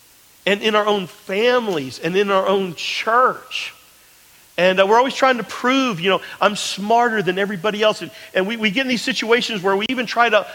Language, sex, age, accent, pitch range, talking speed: English, male, 40-59, American, 180-240 Hz, 210 wpm